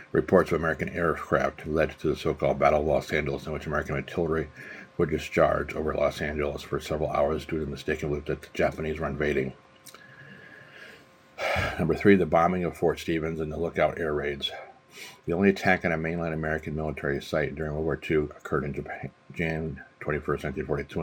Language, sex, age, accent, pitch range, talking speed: English, male, 50-69, American, 70-80 Hz, 185 wpm